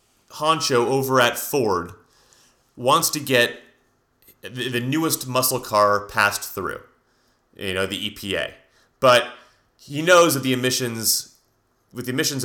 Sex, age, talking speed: male, 30-49, 125 wpm